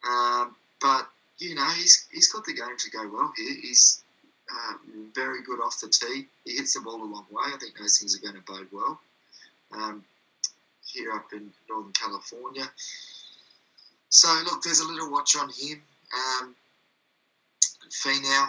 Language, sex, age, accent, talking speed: English, male, 20-39, Australian, 170 wpm